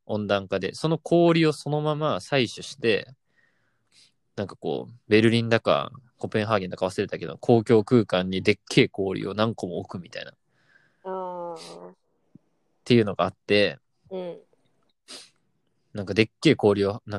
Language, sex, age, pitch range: Japanese, male, 20-39, 105-145 Hz